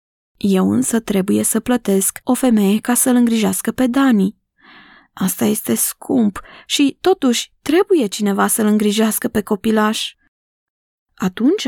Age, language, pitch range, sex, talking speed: 20-39, Romanian, 210-275 Hz, female, 125 wpm